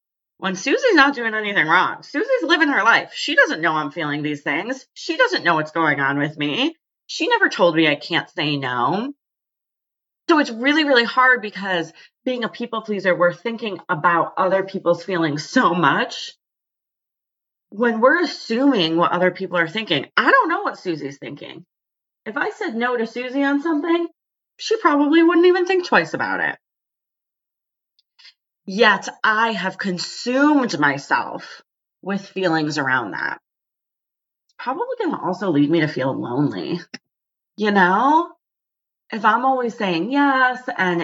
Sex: female